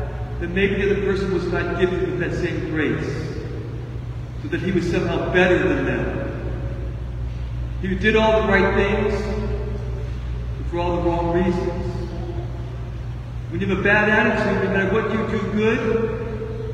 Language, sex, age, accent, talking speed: English, male, 40-59, American, 160 wpm